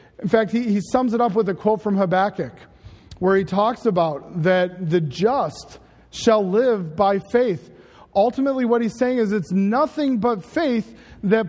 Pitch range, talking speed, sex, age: 165-220 Hz, 170 wpm, male, 40-59